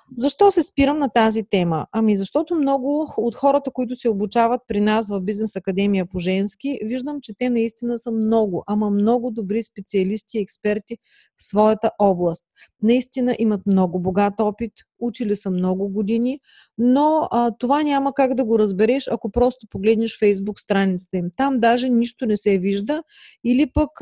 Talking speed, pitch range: 165 wpm, 210-265 Hz